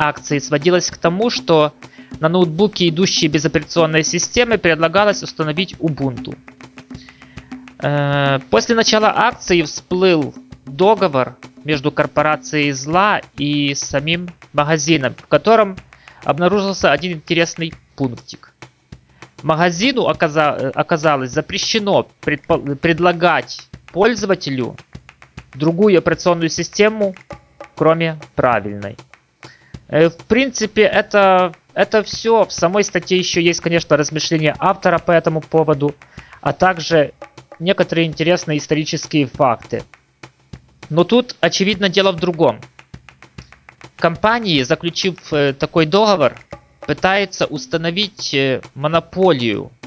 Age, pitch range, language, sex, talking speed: 20-39, 145-185 Hz, Russian, male, 90 wpm